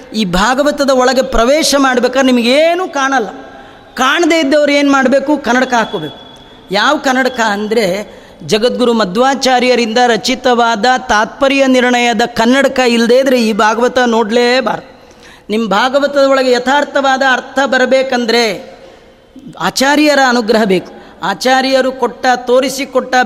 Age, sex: 30-49, female